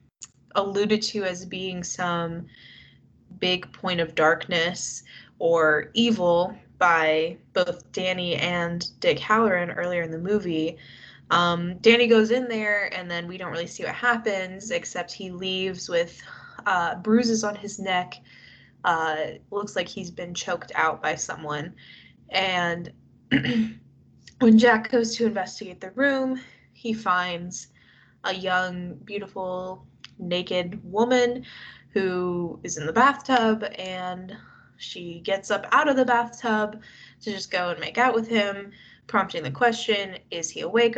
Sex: female